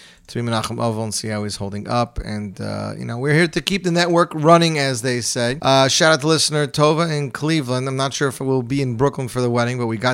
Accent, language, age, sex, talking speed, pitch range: American, English, 30-49, male, 280 wpm, 120-170 Hz